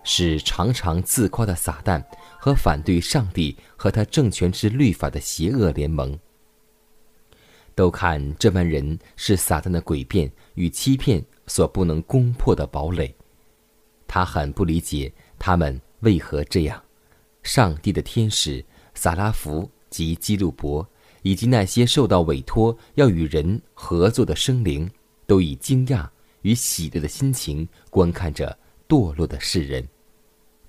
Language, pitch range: Chinese, 80-110 Hz